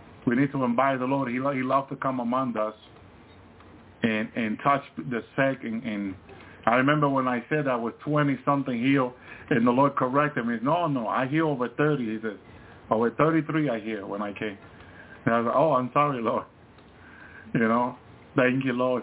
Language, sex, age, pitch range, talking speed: English, male, 50-69, 115-140 Hz, 190 wpm